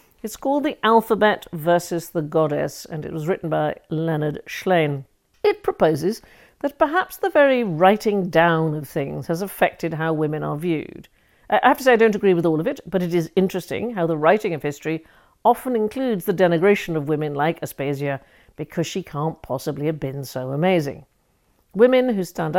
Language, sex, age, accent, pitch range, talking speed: English, female, 50-69, British, 145-190 Hz, 185 wpm